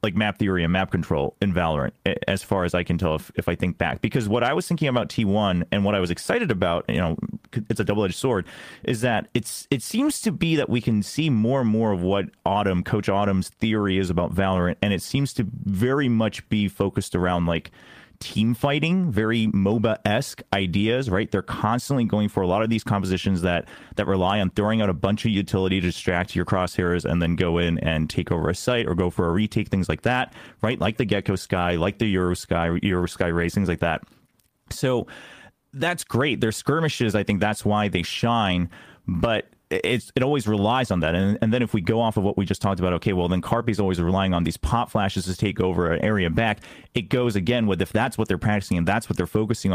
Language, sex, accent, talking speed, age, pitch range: English, male, American, 235 wpm, 30-49, 90-115 Hz